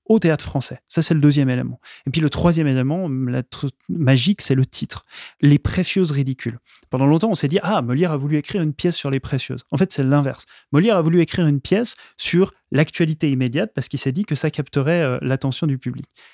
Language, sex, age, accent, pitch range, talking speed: French, male, 30-49, French, 135-175 Hz, 230 wpm